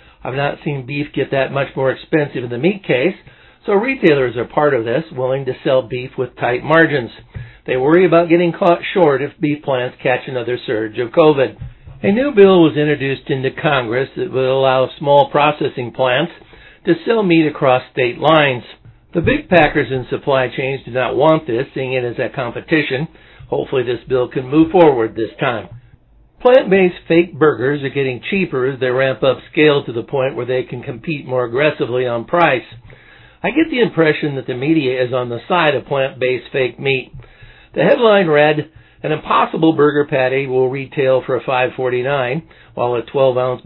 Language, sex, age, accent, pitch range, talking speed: English, male, 60-79, American, 125-155 Hz, 185 wpm